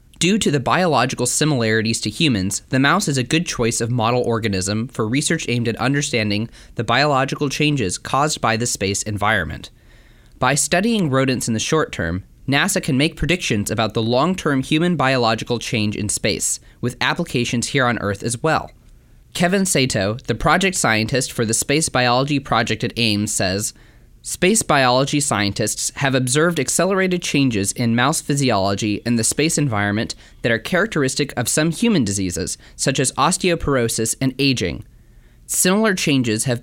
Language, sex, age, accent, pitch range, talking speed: English, male, 20-39, American, 115-150 Hz, 160 wpm